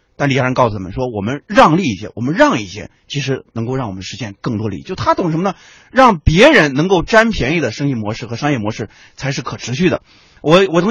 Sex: male